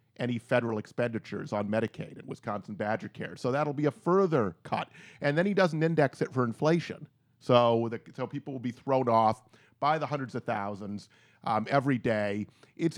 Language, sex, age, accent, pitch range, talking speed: English, male, 40-59, American, 115-150 Hz, 185 wpm